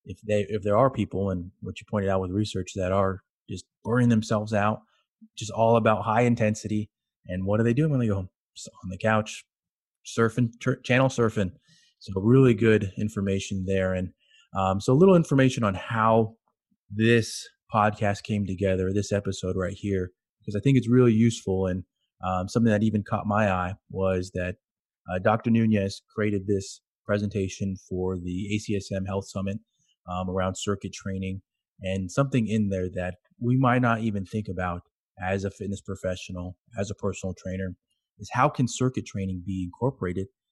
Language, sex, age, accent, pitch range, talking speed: English, male, 30-49, American, 95-115 Hz, 175 wpm